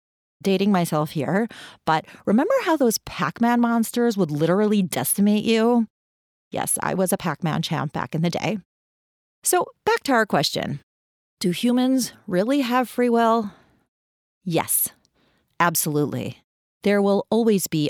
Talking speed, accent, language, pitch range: 135 wpm, American, English, 155-205 Hz